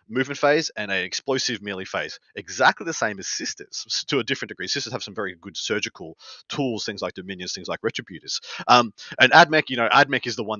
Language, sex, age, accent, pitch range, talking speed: English, male, 30-49, Australian, 115-145 Hz, 215 wpm